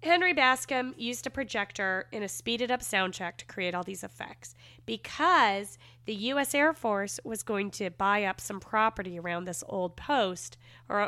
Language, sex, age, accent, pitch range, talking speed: English, female, 30-49, American, 180-245 Hz, 170 wpm